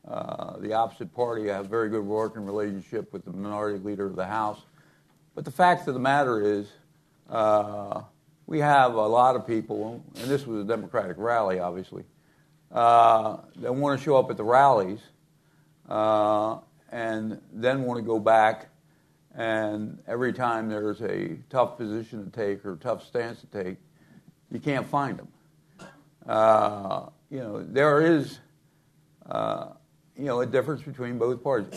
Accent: American